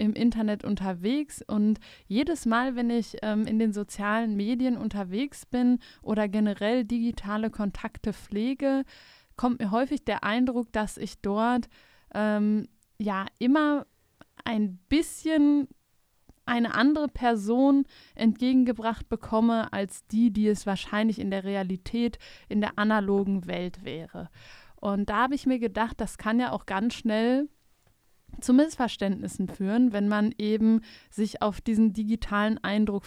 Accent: German